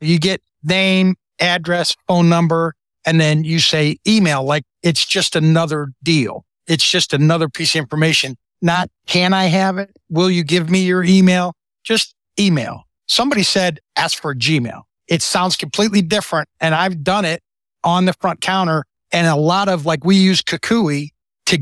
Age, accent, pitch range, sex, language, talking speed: 60-79, American, 155-185 Hz, male, English, 170 wpm